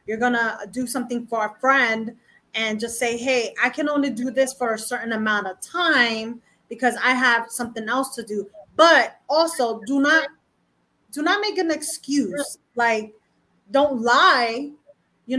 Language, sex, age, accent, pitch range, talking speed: English, female, 20-39, American, 225-270 Hz, 170 wpm